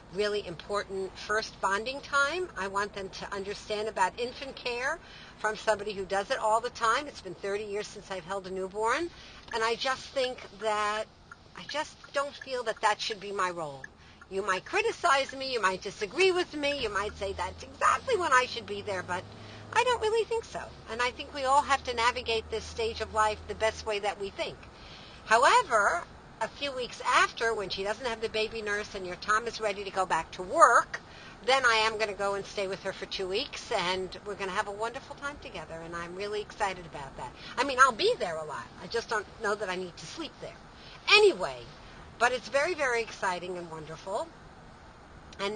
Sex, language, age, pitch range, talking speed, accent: female, English, 50-69, 195-250 Hz, 215 wpm, American